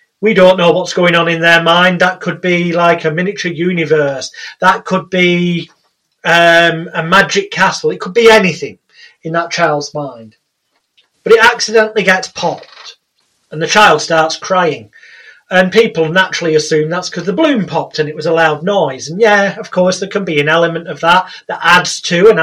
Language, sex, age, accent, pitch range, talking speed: English, male, 30-49, British, 165-210 Hz, 190 wpm